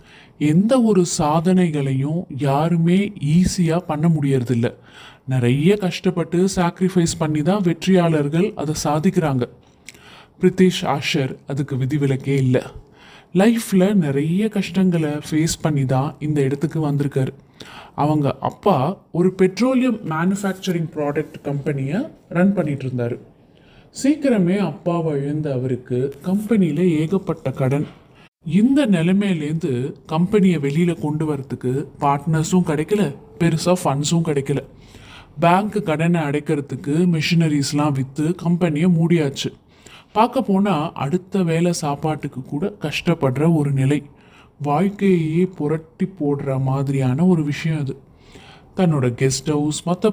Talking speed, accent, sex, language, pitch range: 100 wpm, native, male, Tamil, 140-180 Hz